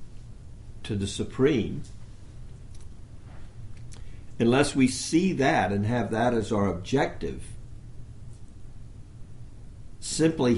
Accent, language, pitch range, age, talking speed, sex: American, English, 105-120 Hz, 60-79, 75 wpm, male